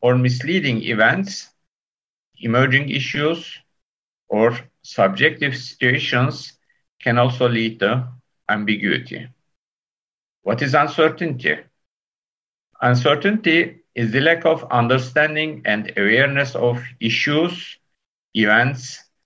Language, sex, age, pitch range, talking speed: Turkish, male, 50-69, 120-155 Hz, 85 wpm